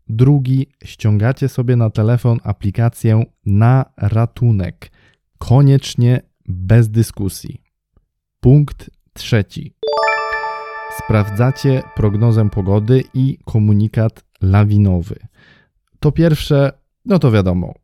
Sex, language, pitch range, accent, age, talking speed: male, Polish, 100-125 Hz, native, 20-39, 80 wpm